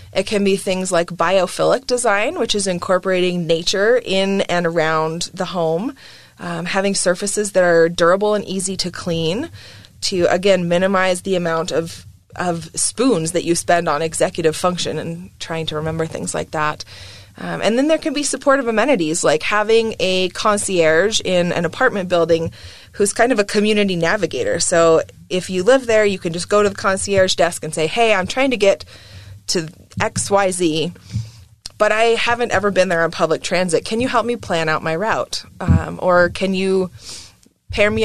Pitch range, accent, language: 165-210 Hz, American, English